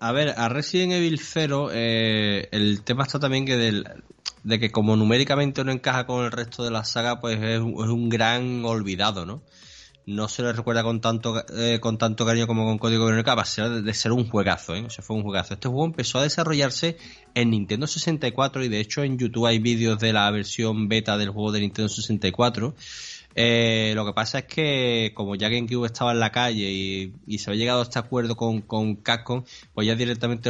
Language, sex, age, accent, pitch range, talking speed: Spanish, male, 20-39, Spanish, 110-130 Hz, 220 wpm